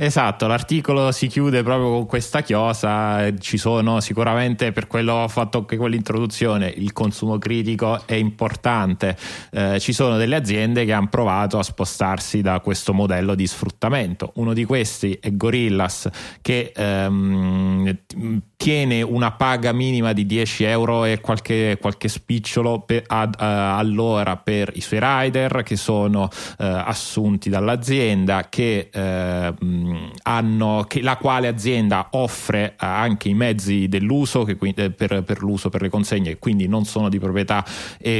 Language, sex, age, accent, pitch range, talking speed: Italian, male, 30-49, native, 100-115 Hz, 150 wpm